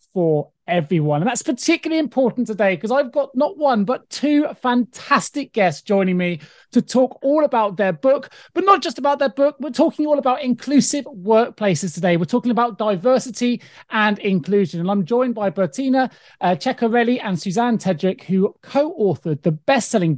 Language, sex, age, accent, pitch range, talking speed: English, male, 30-49, British, 185-255 Hz, 165 wpm